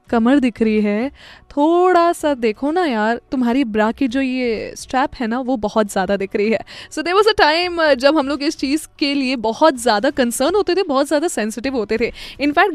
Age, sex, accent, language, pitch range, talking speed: 20-39, female, native, Hindi, 235-335 Hz, 205 wpm